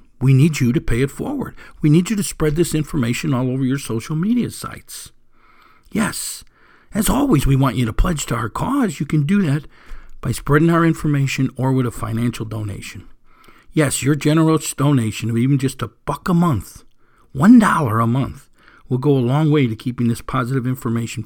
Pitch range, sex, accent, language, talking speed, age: 115-155 Hz, male, American, English, 195 wpm, 50-69